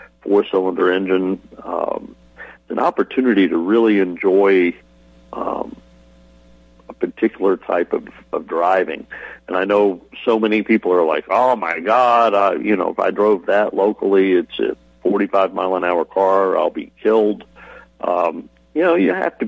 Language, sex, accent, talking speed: English, male, American, 155 wpm